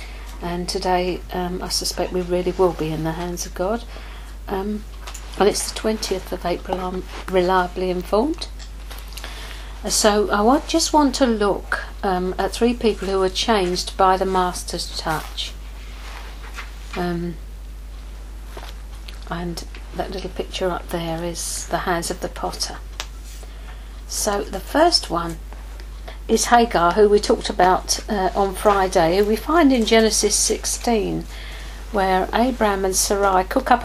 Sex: female